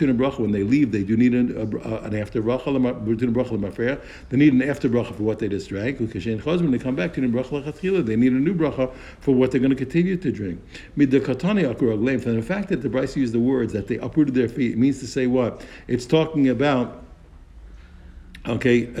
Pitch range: 115-145 Hz